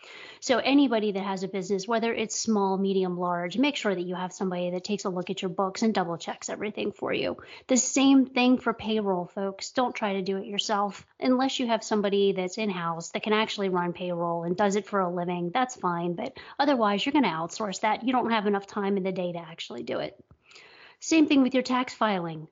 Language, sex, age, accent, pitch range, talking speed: English, female, 30-49, American, 190-235 Hz, 230 wpm